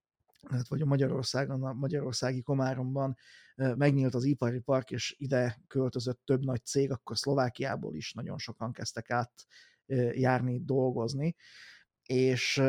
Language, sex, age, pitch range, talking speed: Hungarian, male, 30-49, 125-135 Hz, 120 wpm